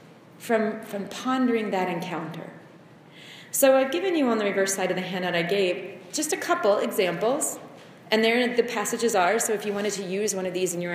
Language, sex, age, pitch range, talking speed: English, female, 30-49, 170-240 Hz, 210 wpm